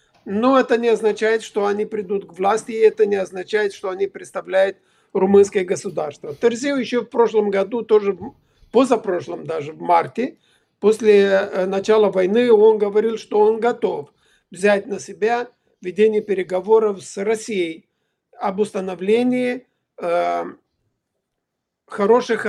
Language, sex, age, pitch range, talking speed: Ukrainian, male, 50-69, 195-230 Hz, 125 wpm